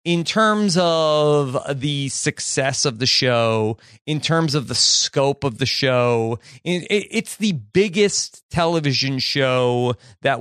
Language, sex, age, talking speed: English, male, 30-49, 125 wpm